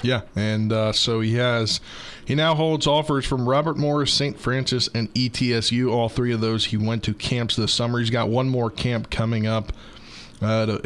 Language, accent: English, American